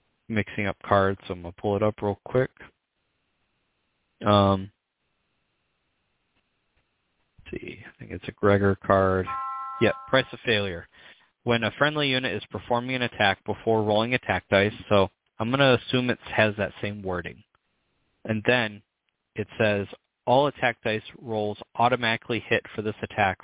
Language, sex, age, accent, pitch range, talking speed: English, male, 20-39, American, 100-120 Hz, 155 wpm